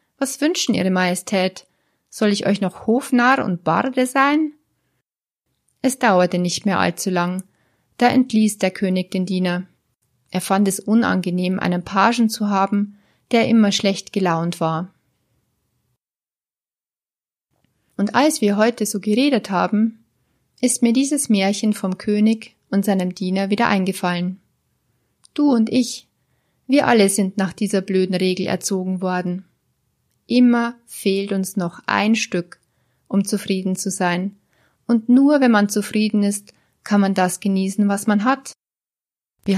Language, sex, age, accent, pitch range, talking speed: German, female, 30-49, German, 185-230 Hz, 140 wpm